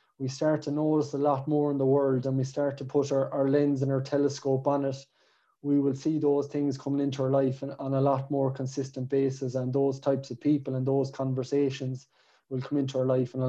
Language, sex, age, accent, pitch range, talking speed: English, male, 20-39, Irish, 130-145 Hz, 235 wpm